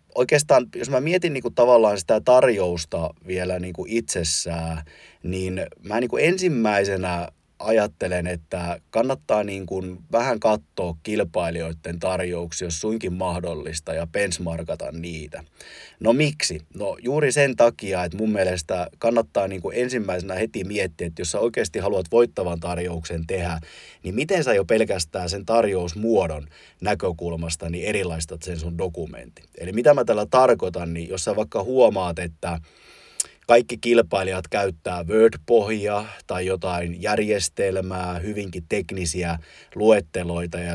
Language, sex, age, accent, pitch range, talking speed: Finnish, male, 30-49, native, 85-115 Hz, 125 wpm